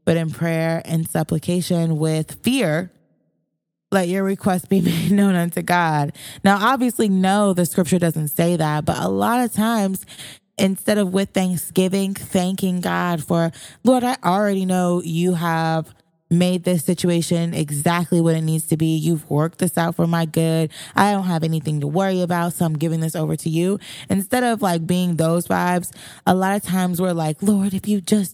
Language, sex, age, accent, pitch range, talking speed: English, female, 20-39, American, 160-195 Hz, 185 wpm